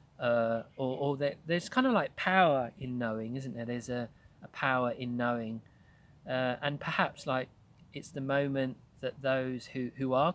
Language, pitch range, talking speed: English, 120-140 Hz, 180 wpm